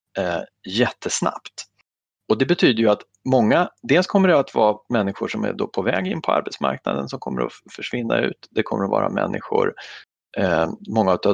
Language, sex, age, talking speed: Swedish, male, 40-59, 170 wpm